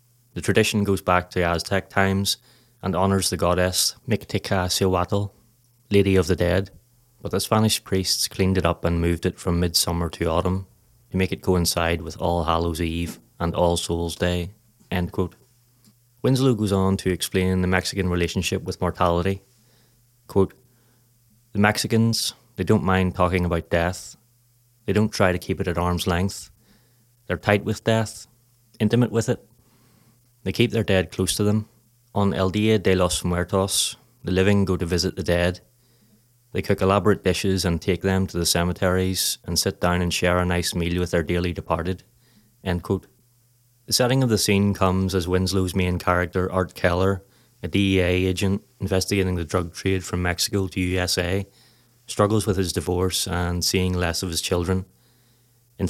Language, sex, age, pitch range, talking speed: English, male, 30-49, 90-115 Hz, 170 wpm